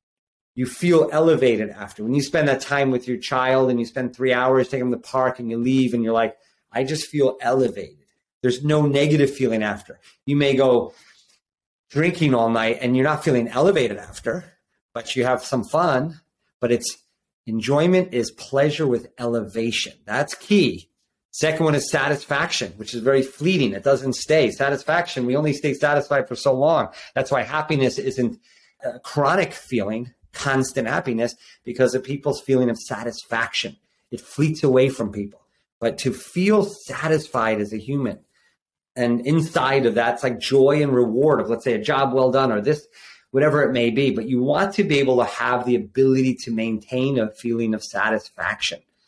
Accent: American